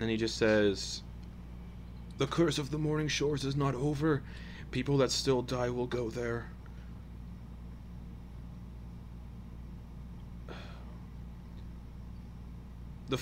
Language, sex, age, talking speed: English, male, 30-49, 95 wpm